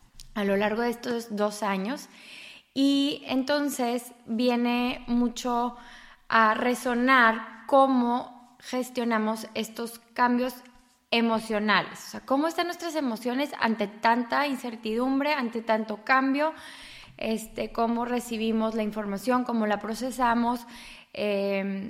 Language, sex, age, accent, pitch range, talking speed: English, female, 20-39, Mexican, 220-260 Hz, 105 wpm